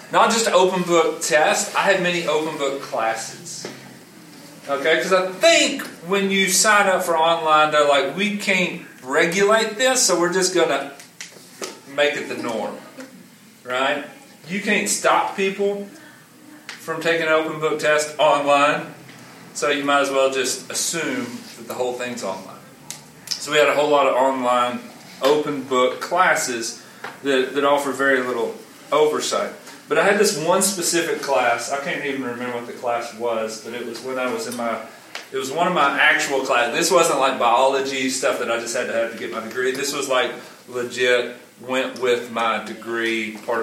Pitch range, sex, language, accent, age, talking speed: 120-190 Hz, male, English, American, 40-59, 180 wpm